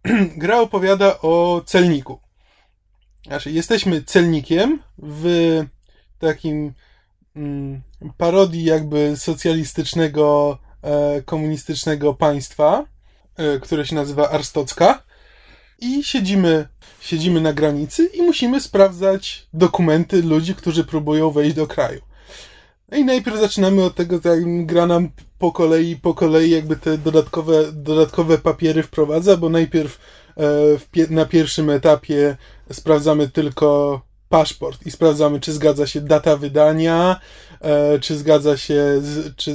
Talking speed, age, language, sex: 120 wpm, 20-39, Polish, male